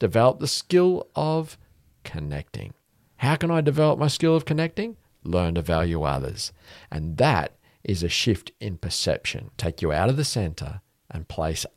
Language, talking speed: English, 165 wpm